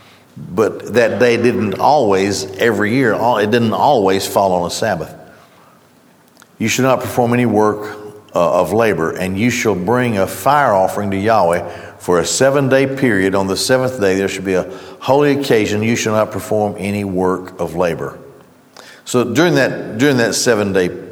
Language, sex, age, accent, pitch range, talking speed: English, male, 50-69, American, 95-125 Hz, 175 wpm